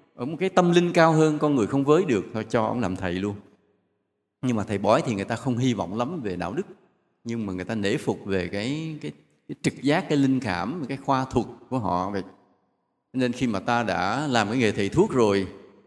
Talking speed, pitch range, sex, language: 235 wpm, 100-145 Hz, male, Vietnamese